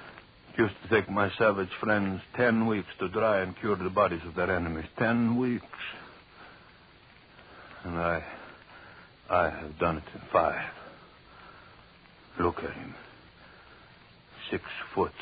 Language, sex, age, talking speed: English, male, 60-79, 125 wpm